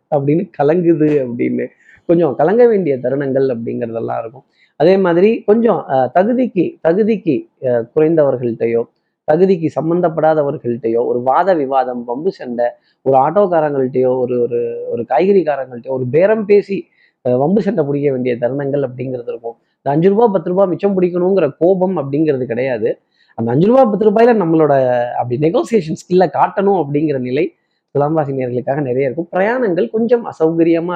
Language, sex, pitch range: Tamil, male, 130-185 Hz